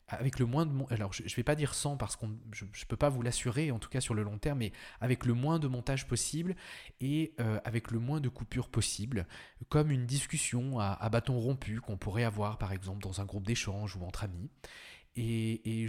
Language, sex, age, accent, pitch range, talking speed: French, male, 20-39, French, 105-130 Hz, 235 wpm